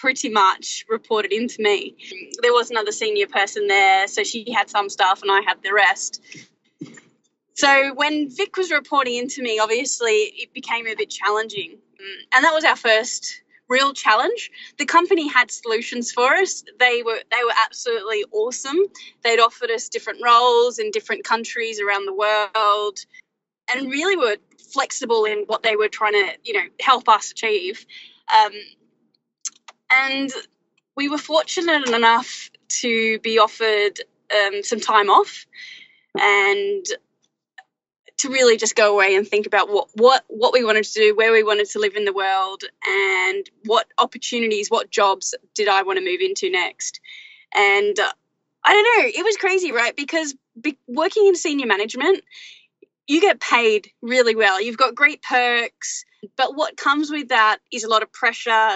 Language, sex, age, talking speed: English, female, 20-39, 165 wpm